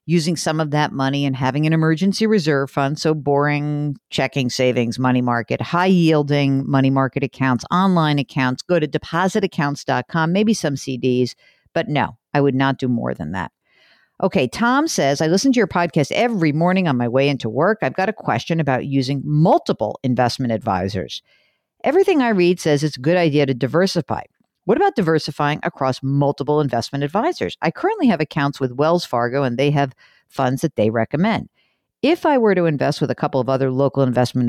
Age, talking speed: 50-69, 185 wpm